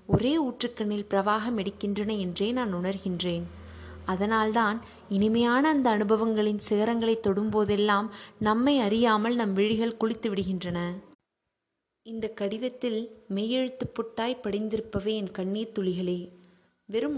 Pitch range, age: 195-230 Hz, 20-39